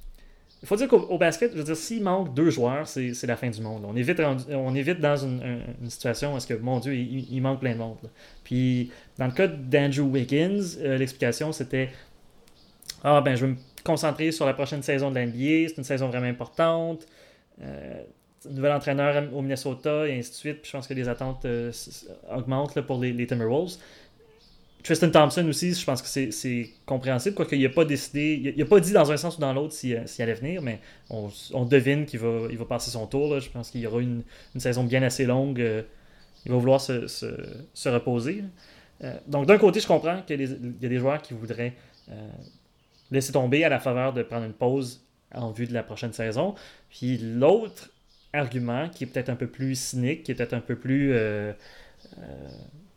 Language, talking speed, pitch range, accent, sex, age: French, 220 wpm, 120-145 Hz, Canadian, male, 30-49